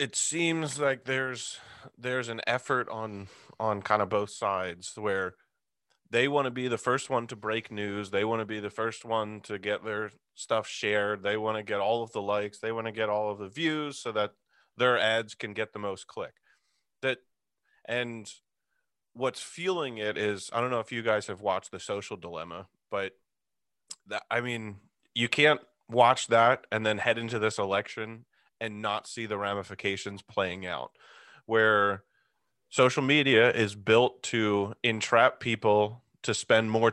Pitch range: 105-120 Hz